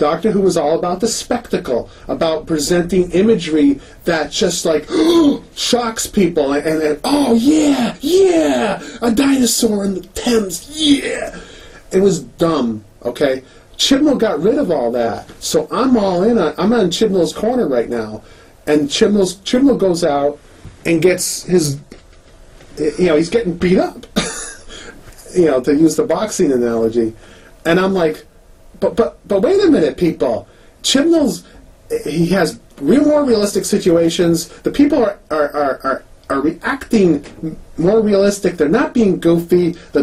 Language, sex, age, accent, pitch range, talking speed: English, male, 40-59, American, 155-225 Hz, 150 wpm